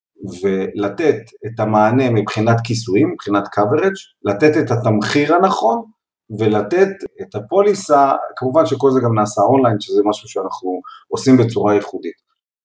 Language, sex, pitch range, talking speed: Hebrew, male, 115-155 Hz, 125 wpm